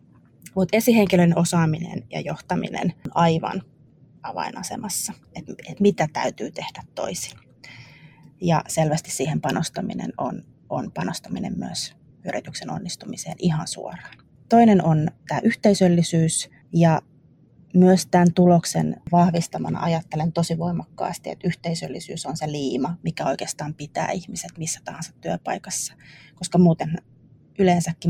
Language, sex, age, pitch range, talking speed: Finnish, female, 30-49, 155-180 Hz, 110 wpm